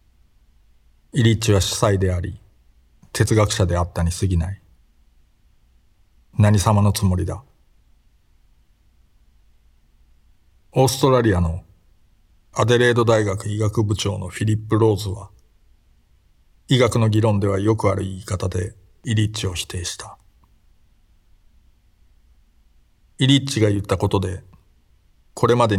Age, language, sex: 50-69, Japanese, male